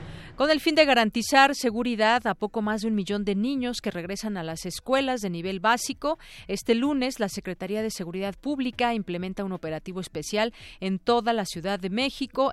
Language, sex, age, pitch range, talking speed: Spanish, female, 40-59, 190-250 Hz, 185 wpm